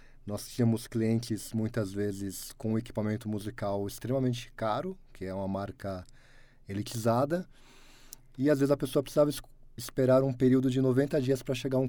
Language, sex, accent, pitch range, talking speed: Portuguese, male, Brazilian, 110-130 Hz, 155 wpm